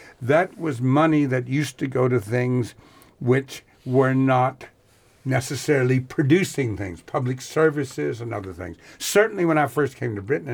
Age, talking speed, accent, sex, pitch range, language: 60-79, 160 wpm, American, male, 115-145 Hz, English